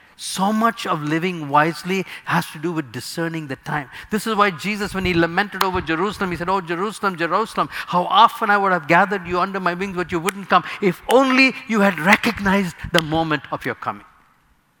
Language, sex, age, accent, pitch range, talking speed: English, male, 50-69, Indian, 150-205 Hz, 205 wpm